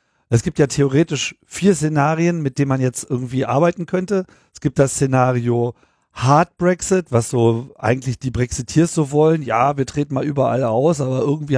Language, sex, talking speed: German, male, 175 wpm